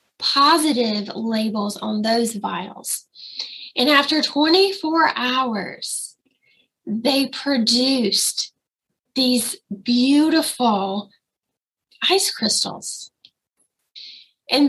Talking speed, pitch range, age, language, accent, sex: 65 wpm, 230-295 Hz, 10-29, English, American, female